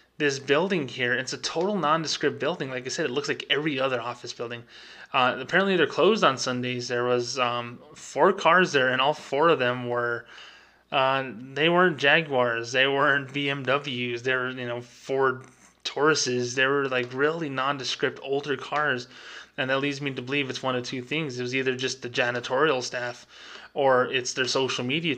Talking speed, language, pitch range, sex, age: 190 wpm, English, 125-140 Hz, male, 20-39